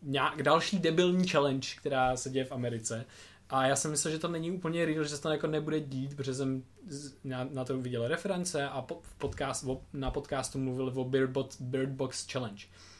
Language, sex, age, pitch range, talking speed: Czech, male, 20-39, 115-150 Hz, 200 wpm